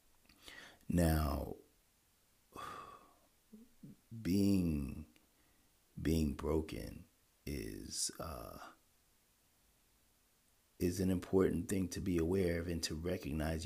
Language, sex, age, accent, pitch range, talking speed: English, male, 40-59, American, 75-95 Hz, 75 wpm